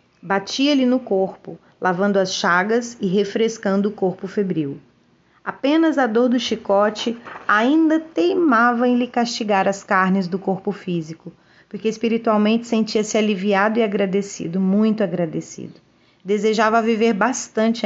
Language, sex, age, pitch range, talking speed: Portuguese, female, 30-49, 195-245 Hz, 125 wpm